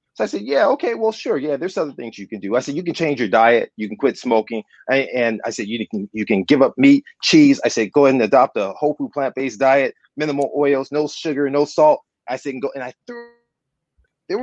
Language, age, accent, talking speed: English, 30-49, American, 260 wpm